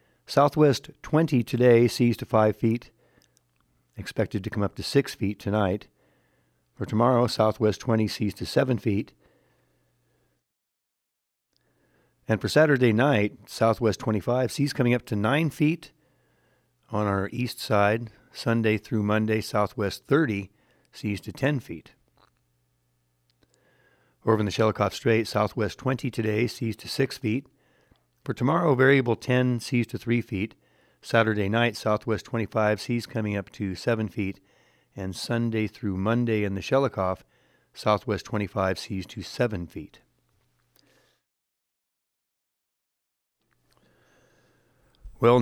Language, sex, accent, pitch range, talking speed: English, male, American, 100-120 Hz, 120 wpm